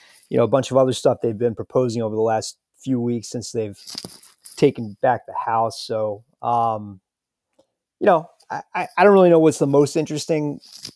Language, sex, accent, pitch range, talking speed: English, male, American, 115-145 Hz, 185 wpm